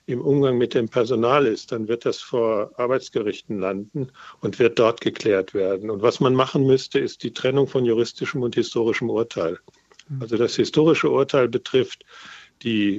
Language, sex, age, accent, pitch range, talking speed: German, male, 50-69, German, 115-140 Hz, 165 wpm